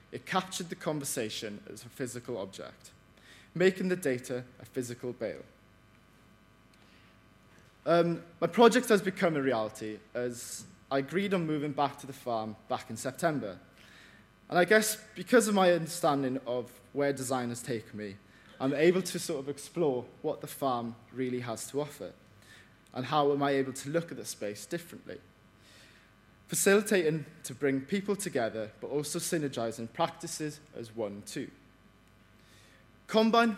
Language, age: English, 20-39